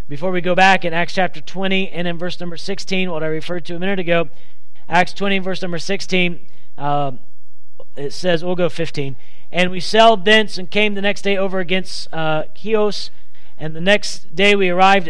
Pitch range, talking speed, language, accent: 150-200 Hz, 200 wpm, English, American